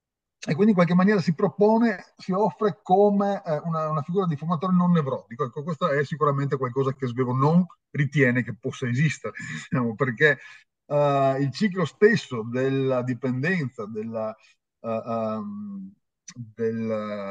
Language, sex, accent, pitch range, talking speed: Italian, male, native, 120-155 Hz, 140 wpm